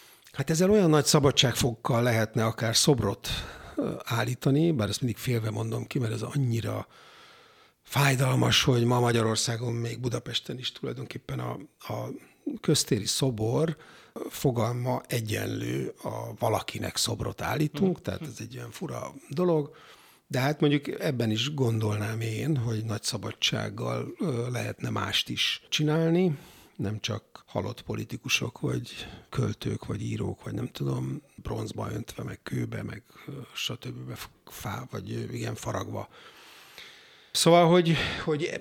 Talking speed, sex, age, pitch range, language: 125 wpm, male, 60-79, 110-145 Hz, Hungarian